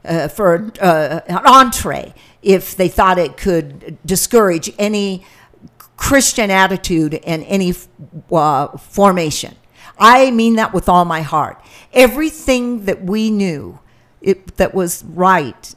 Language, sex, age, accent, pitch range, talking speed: English, female, 50-69, American, 170-220 Hz, 120 wpm